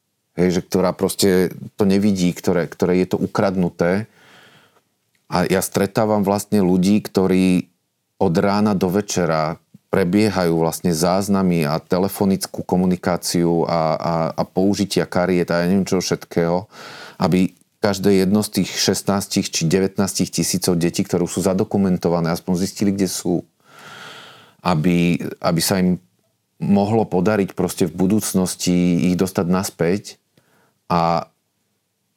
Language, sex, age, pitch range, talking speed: Slovak, male, 30-49, 85-100 Hz, 125 wpm